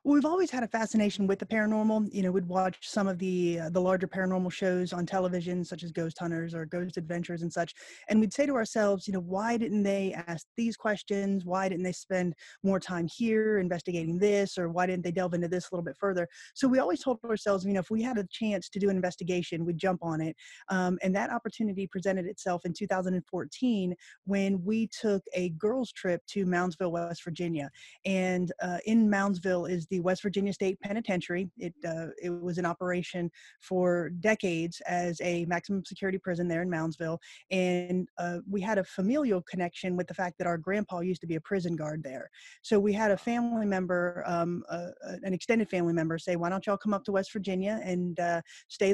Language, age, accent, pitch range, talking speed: English, 20-39, American, 175-205 Hz, 210 wpm